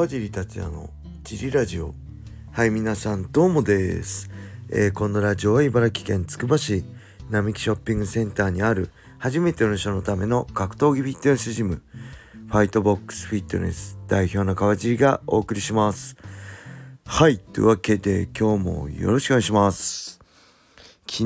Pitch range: 95-115 Hz